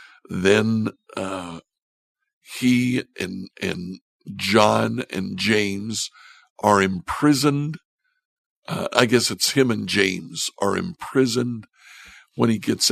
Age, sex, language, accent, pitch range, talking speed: 60-79, male, English, American, 105-145 Hz, 100 wpm